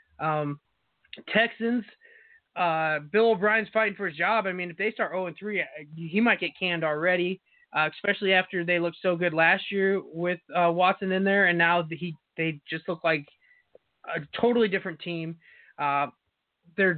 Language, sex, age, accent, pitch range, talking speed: English, male, 20-39, American, 170-200 Hz, 165 wpm